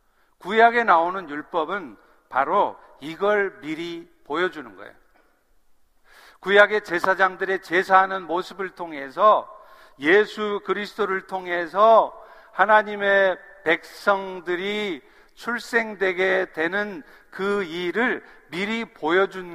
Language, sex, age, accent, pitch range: Korean, male, 50-69, native, 170-215 Hz